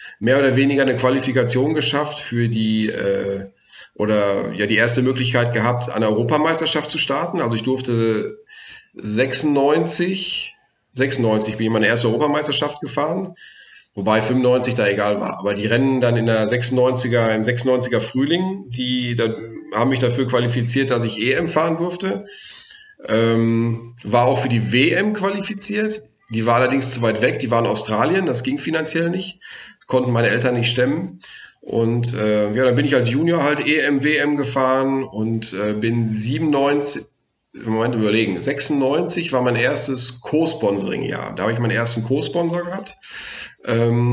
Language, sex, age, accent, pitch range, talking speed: German, male, 40-59, German, 115-145 Hz, 145 wpm